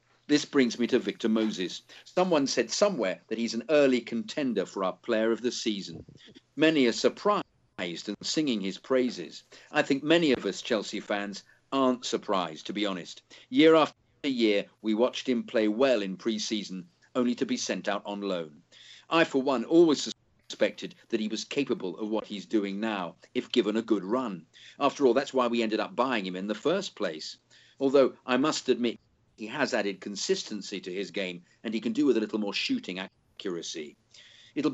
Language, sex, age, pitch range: English, male, 50-69, 105-130 Hz